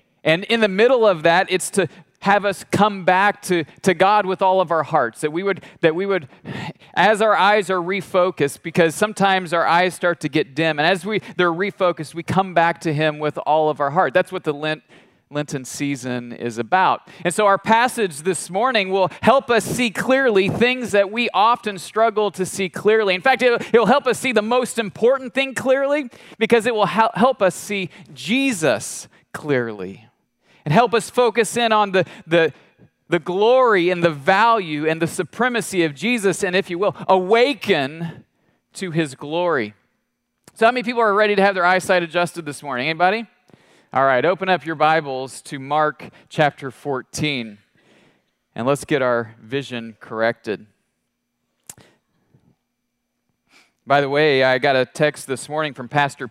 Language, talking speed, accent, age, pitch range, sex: English, 180 wpm, American, 40-59, 155-210 Hz, male